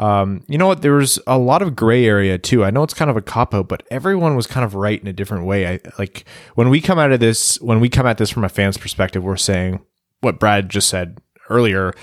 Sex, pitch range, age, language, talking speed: male, 100-120 Hz, 20-39, English, 270 wpm